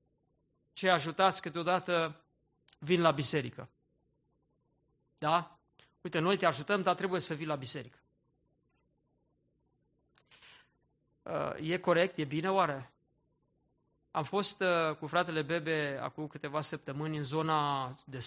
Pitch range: 155-240 Hz